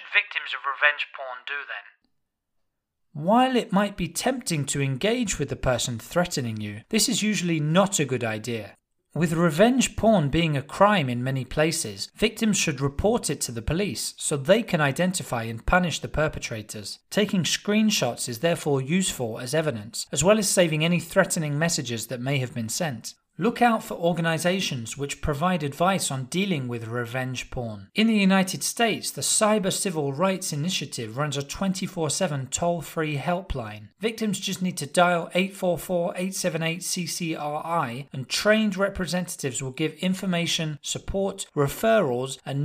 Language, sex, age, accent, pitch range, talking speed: English, male, 30-49, British, 140-190 Hz, 150 wpm